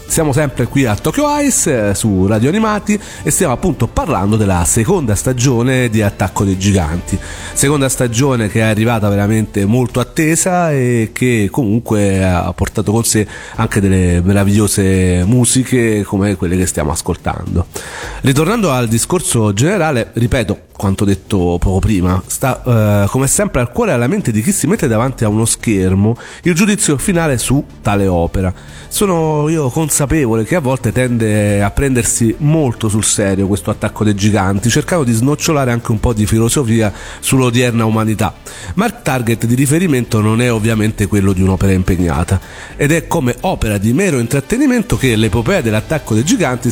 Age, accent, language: 40-59, native, Italian